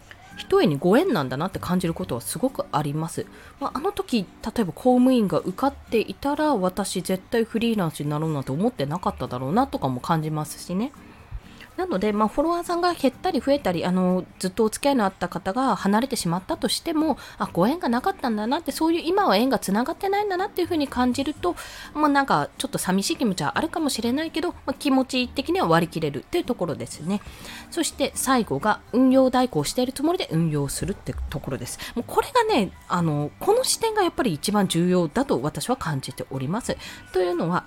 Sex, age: female, 20-39